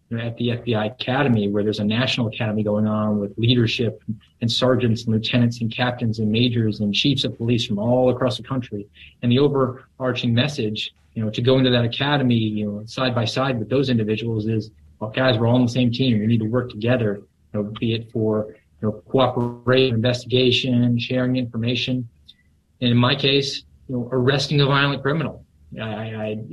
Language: English